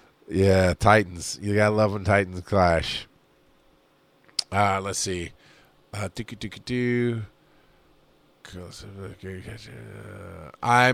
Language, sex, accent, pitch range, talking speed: English, male, American, 90-115 Hz, 75 wpm